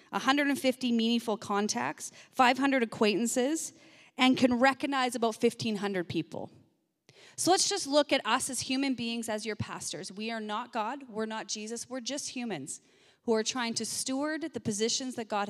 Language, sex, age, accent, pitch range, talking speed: English, female, 30-49, American, 210-260 Hz, 165 wpm